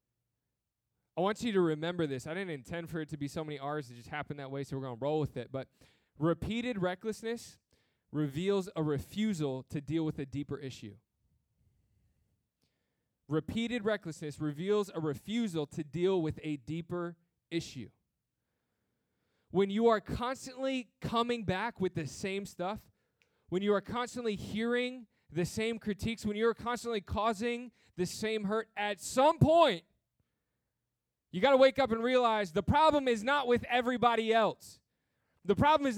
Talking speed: 160 wpm